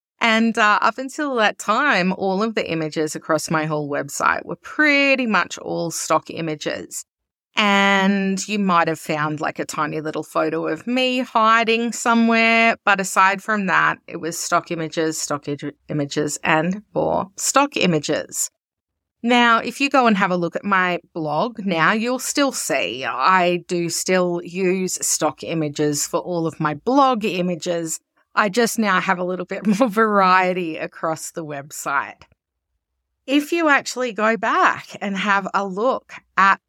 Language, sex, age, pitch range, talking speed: English, female, 30-49, 160-225 Hz, 160 wpm